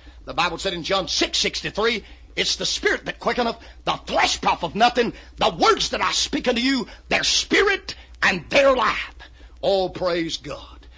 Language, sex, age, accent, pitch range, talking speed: English, male, 50-69, American, 150-250 Hz, 175 wpm